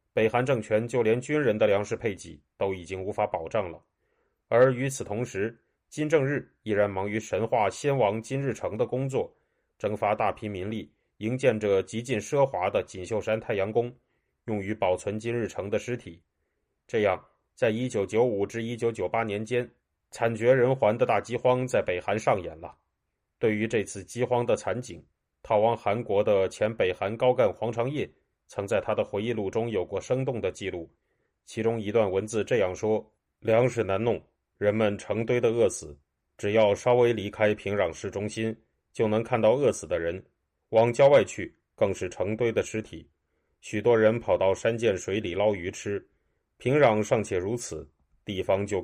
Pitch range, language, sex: 100-120 Hz, Chinese, male